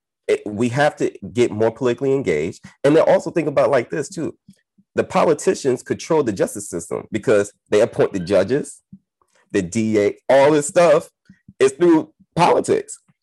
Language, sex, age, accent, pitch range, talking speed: English, male, 30-49, American, 100-140 Hz, 155 wpm